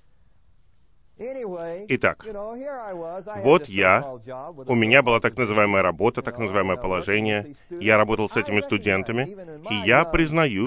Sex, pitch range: male, 105-140 Hz